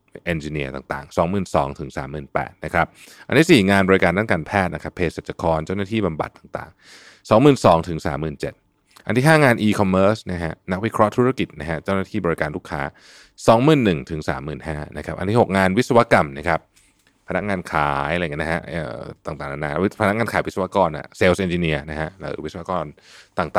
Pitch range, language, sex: 80-100 Hz, Thai, male